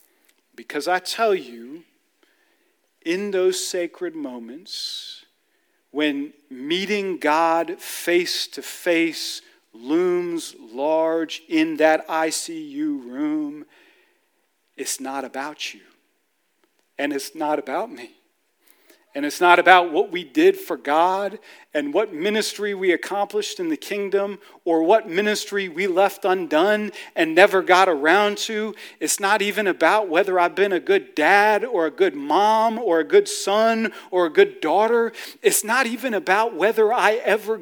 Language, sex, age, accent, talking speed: English, male, 40-59, American, 135 wpm